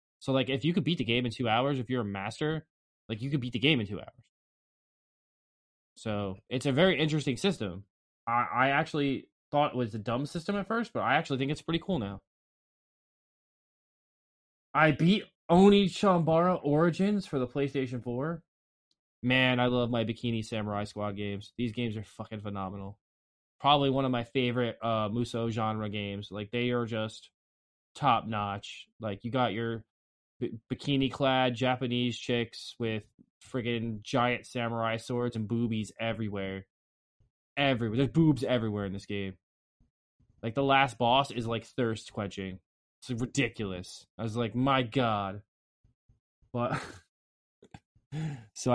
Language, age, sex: English, 20-39, male